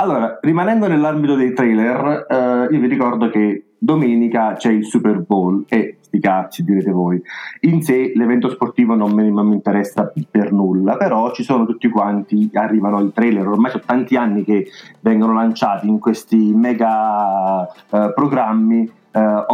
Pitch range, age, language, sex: 110-130 Hz, 40-59, Italian, male